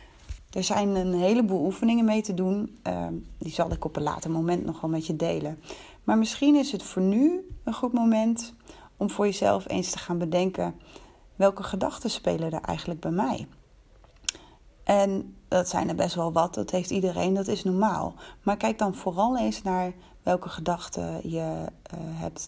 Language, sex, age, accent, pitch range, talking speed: Dutch, female, 30-49, Dutch, 175-225 Hz, 175 wpm